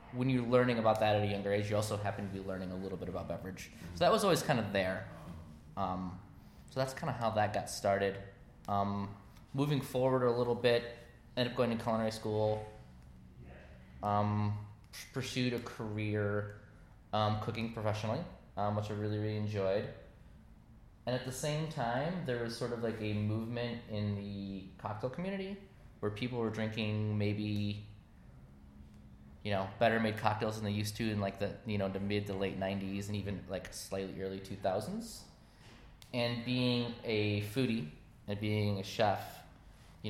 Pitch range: 100-120 Hz